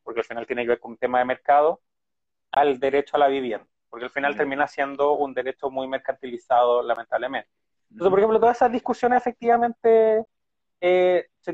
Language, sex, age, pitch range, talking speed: Spanish, male, 30-49, 135-180 Hz, 180 wpm